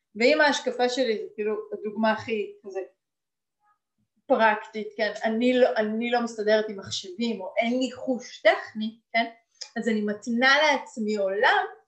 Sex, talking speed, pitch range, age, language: female, 140 wpm, 210-290 Hz, 30-49, Hebrew